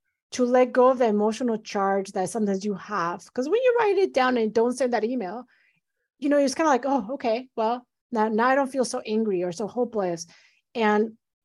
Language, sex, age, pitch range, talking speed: English, female, 30-49, 205-260 Hz, 220 wpm